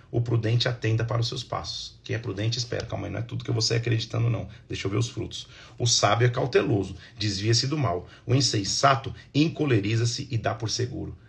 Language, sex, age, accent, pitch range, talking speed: Portuguese, male, 40-59, Brazilian, 115-140 Hz, 220 wpm